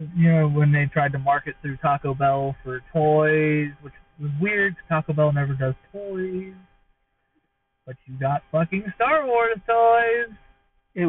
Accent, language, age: American, English, 30-49